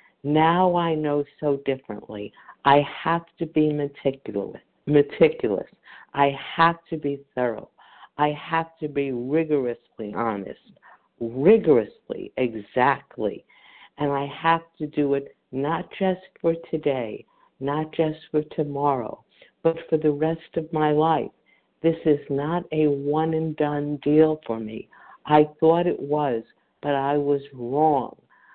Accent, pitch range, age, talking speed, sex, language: American, 135-160 Hz, 50-69, 130 wpm, female, English